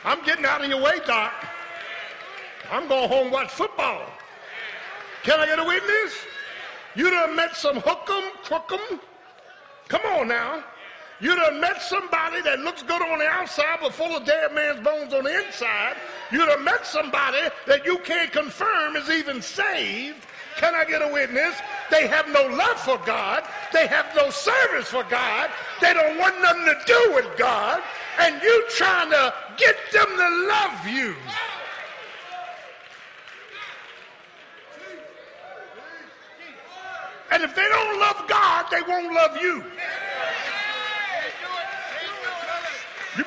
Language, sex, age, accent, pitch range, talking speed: English, male, 50-69, American, 295-380 Hz, 140 wpm